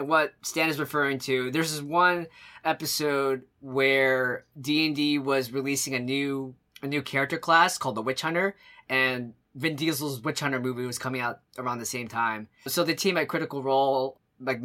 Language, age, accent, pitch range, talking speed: English, 20-39, American, 130-165 Hz, 175 wpm